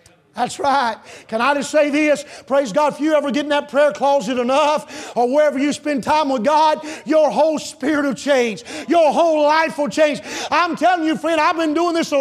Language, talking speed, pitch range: English, 215 wpm, 250-325 Hz